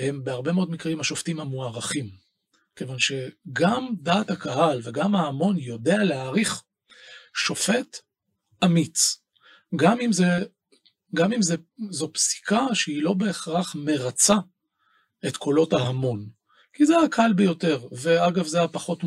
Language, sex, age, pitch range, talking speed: Hebrew, male, 40-59, 130-175 Hz, 120 wpm